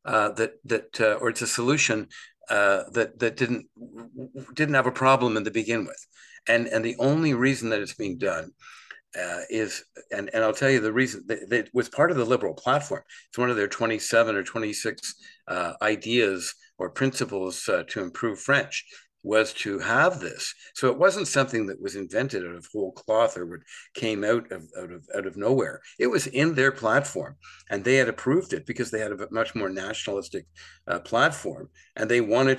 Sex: male